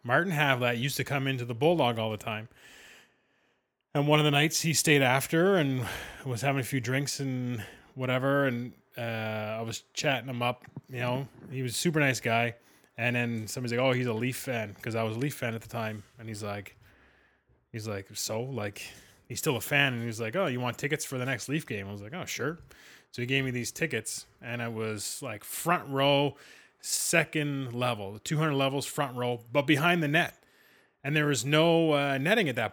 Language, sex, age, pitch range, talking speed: English, male, 20-39, 115-145 Hz, 215 wpm